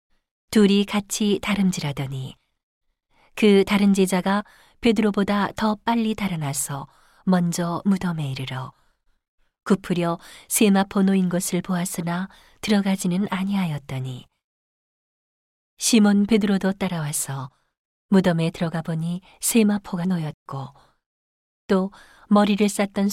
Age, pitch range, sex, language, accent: 40-59, 165-205 Hz, female, Korean, native